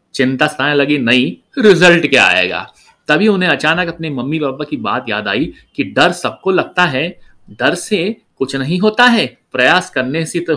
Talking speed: 180 wpm